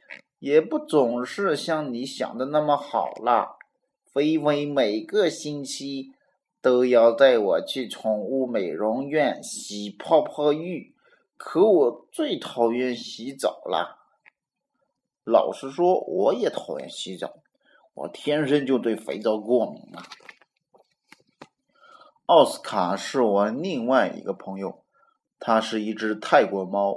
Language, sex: Chinese, male